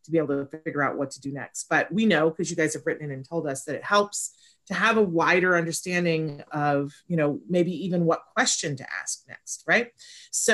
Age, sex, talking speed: 30-49, female, 240 wpm